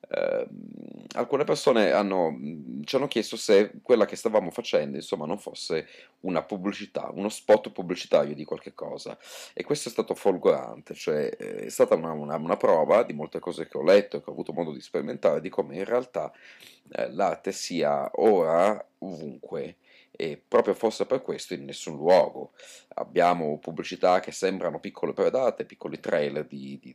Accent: native